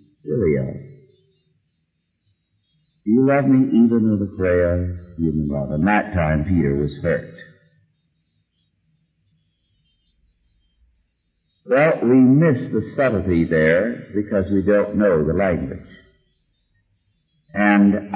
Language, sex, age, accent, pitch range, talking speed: English, male, 50-69, American, 90-120 Hz, 100 wpm